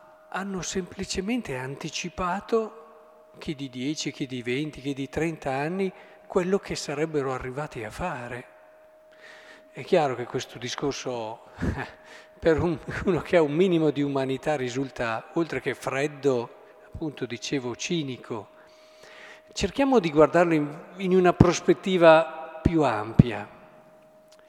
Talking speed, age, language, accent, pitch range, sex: 115 wpm, 50-69, Italian, native, 140-190 Hz, male